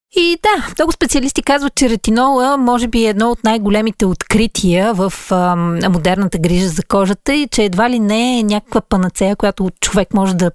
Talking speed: 180 wpm